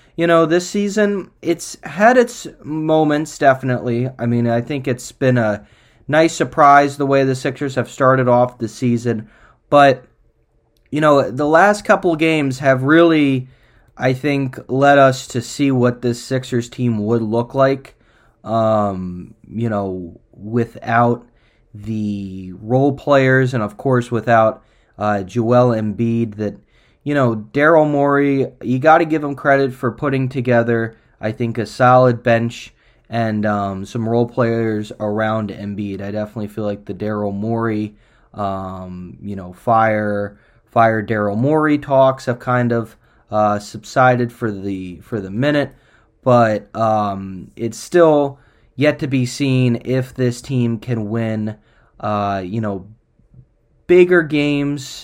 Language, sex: English, male